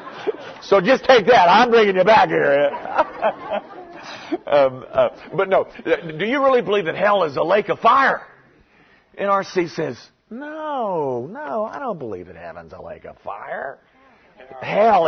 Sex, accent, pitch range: male, American, 165-255 Hz